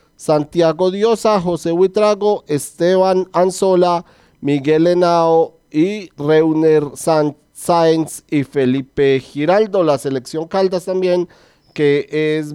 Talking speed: 95 wpm